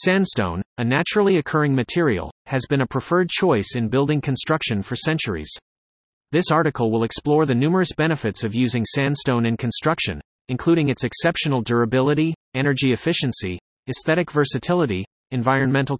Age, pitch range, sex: 30-49, 120-160 Hz, male